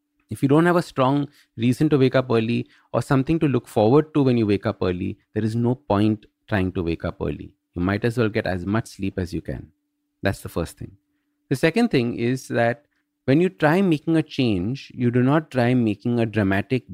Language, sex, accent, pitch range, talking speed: English, male, Indian, 110-145 Hz, 225 wpm